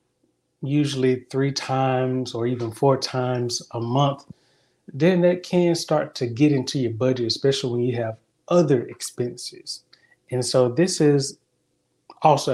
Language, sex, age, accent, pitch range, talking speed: English, male, 20-39, American, 115-140 Hz, 140 wpm